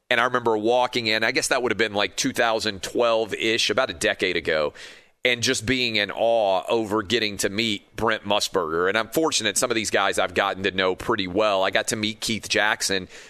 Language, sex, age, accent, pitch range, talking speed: English, male, 40-59, American, 100-120 Hz, 210 wpm